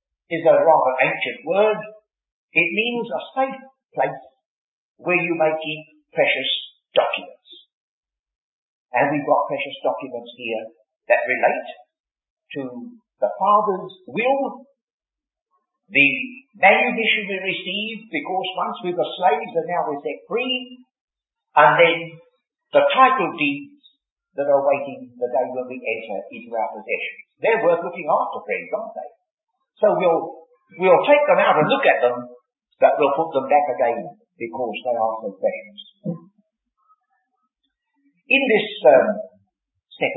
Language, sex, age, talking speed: English, male, 50-69, 135 wpm